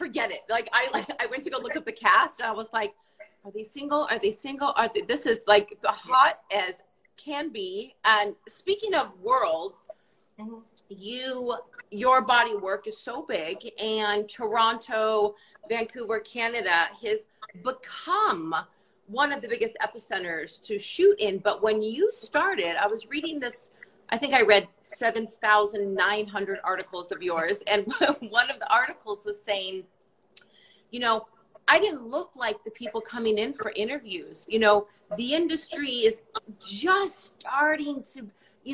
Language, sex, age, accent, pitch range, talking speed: English, female, 30-49, American, 210-305 Hz, 160 wpm